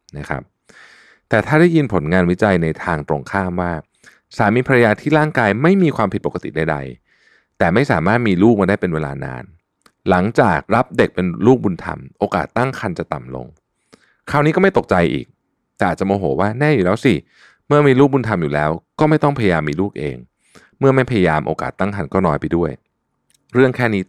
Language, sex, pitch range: Thai, male, 85-120 Hz